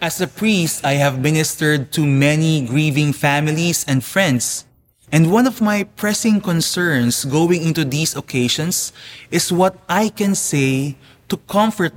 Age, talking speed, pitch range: 20-39, 145 wpm, 130-175 Hz